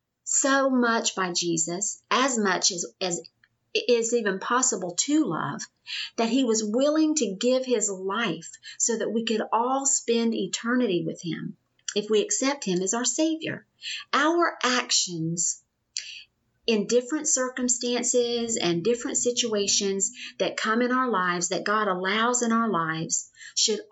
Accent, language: American, English